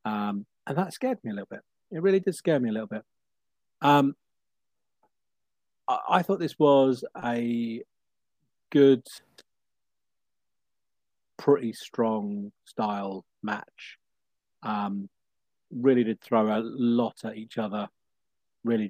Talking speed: 120 wpm